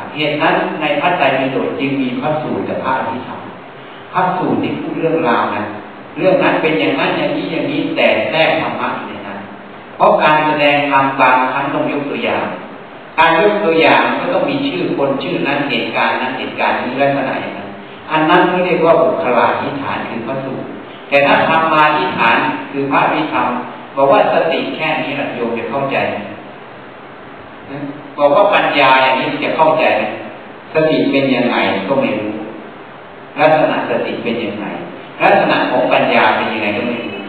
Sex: male